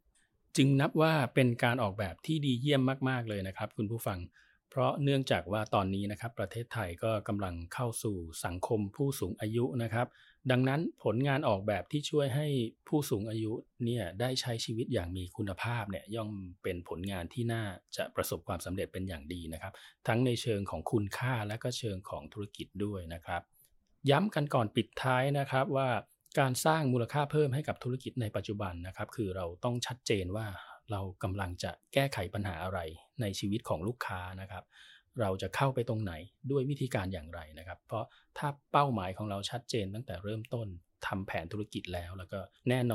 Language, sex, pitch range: Thai, male, 95-130 Hz